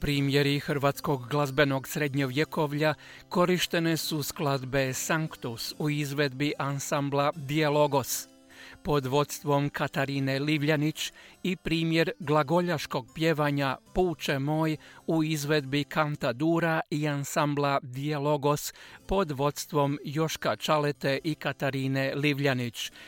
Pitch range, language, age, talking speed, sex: 140-160 Hz, Croatian, 40-59, 95 wpm, male